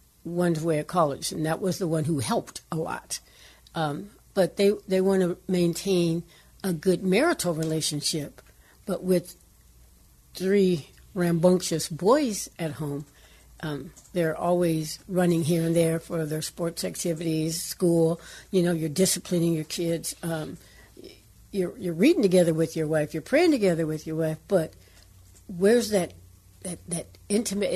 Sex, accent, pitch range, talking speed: female, American, 160-185 Hz, 150 wpm